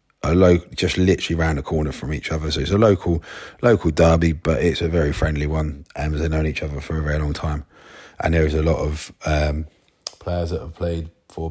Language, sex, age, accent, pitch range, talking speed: English, male, 30-49, British, 80-95 Hz, 230 wpm